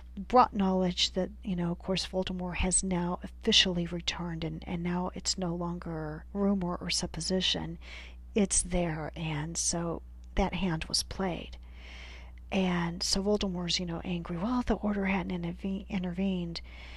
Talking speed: 140 wpm